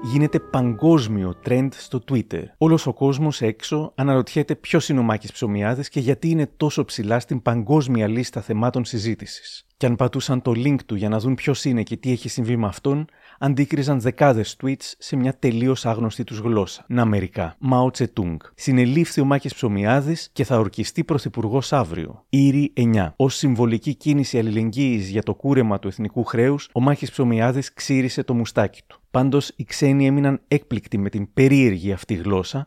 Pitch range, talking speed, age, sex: 110-140 Hz, 170 wpm, 30-49, male